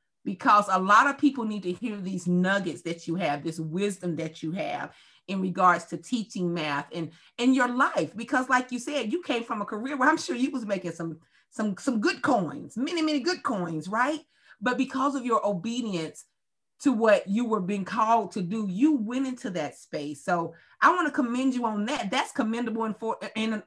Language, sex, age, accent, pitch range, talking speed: English, female, 40-59, American, 170-245 Hz, 210 wpm